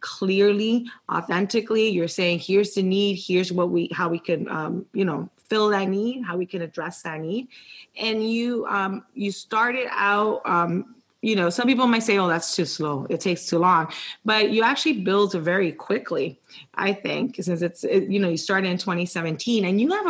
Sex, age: female, 30-49